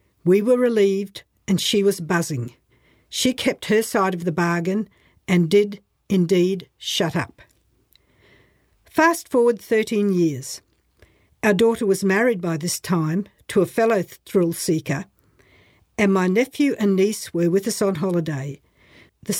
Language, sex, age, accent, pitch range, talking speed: English, female, 60-79, Australian, 175-225 Hz, 140 wpm